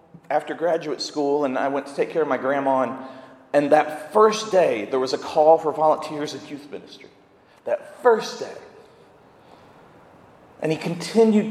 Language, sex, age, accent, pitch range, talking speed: English, male, 40-59, American, 145-200 Hz, 165 wpm